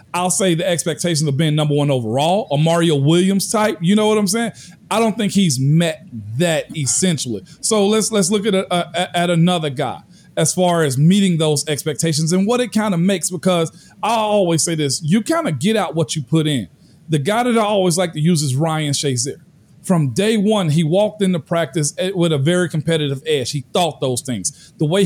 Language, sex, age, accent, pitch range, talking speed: English, male, 40-59, American, 150-190 Hz, 215 wpm